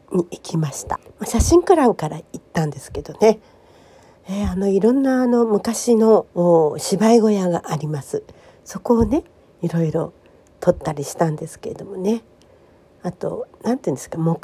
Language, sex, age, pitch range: Japanese, female, 50-69, 155-255 Hz